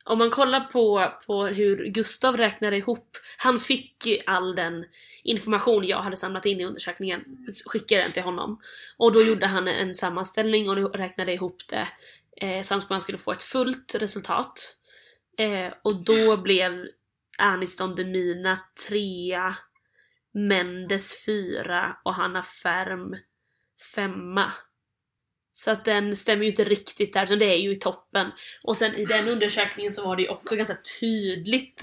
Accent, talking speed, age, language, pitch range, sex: native, 155 wpm, 20-39, Swedish, 185-220 Hz, female